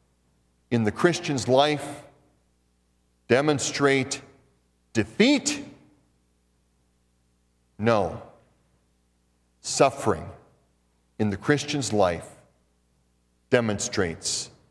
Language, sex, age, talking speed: English, male, 50-69, 55 wpm